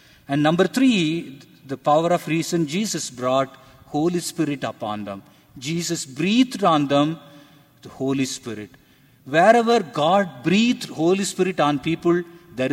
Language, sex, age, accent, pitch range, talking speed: English, male, 50-69, Indian, 130-170 Hz, 130 wpm